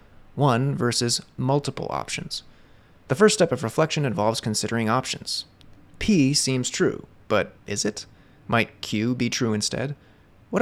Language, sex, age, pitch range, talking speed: English, male, 30-49, 100-130 Hz, 135 wpm